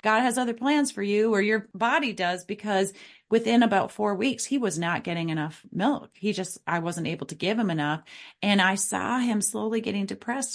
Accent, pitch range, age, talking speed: American, 180-230 Hz, 30-49, 210 wpm